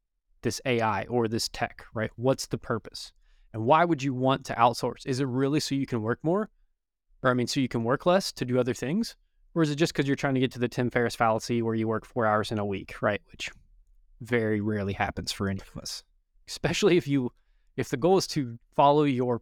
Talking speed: 240 wpm